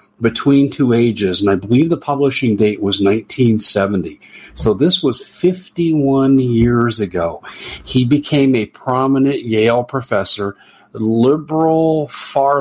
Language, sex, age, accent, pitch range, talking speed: English, male, 50-69, American, 110-140 Hz, 120 wpm